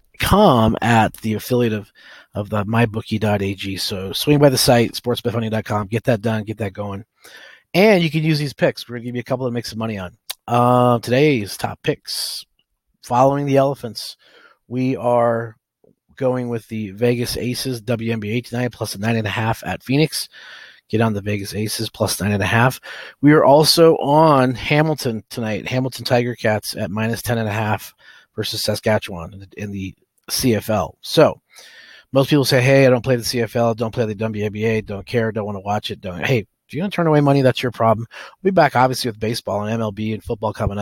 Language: English